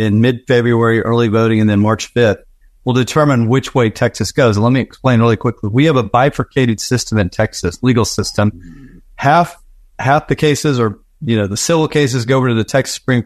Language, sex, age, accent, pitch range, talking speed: English, male, 40-59, American, 115-140 Hz, 210 wpm